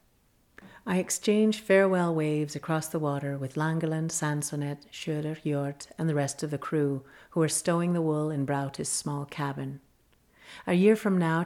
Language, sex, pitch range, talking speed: English, female, 145-180 Hz, 160 wpm